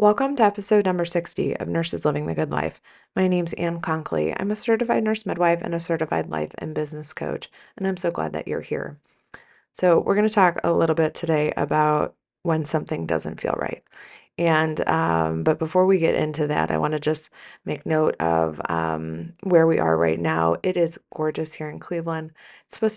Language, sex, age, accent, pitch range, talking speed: English, female, 20-39, American, 150-185 Hz, 200 wpm